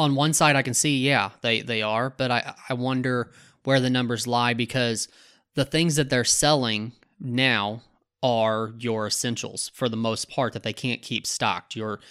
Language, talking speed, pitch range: English, 190 wpm, 110-130 Hz